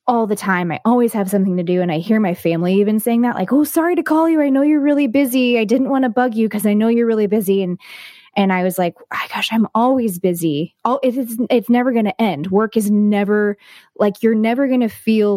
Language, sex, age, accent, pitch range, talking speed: English, female, 20-39, American, 175-225 Hz, 250 wpm